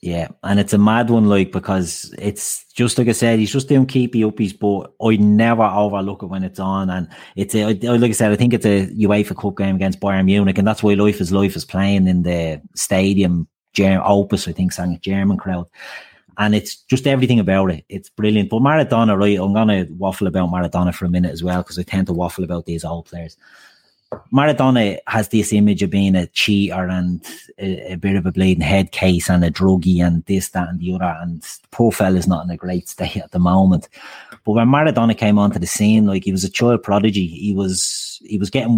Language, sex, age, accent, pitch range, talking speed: English, male, 30-49, Irish, 90-105 Hz, 225 wpm